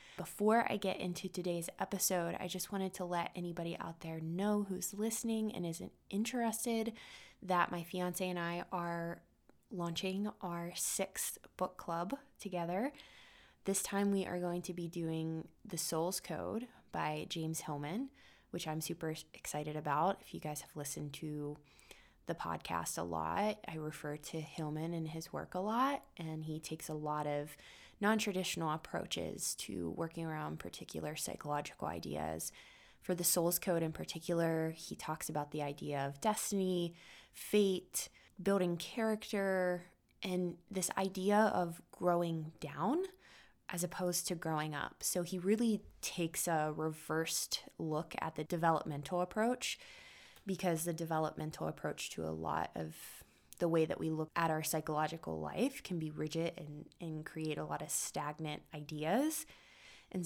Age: 20-39